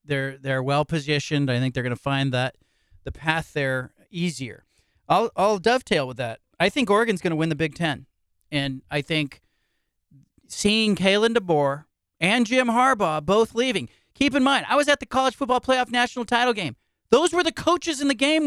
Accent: American